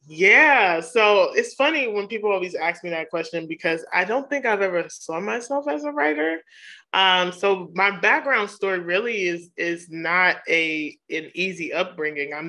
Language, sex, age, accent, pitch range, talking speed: English, male, 20-39, American, 155-190 Hz, 175 wpm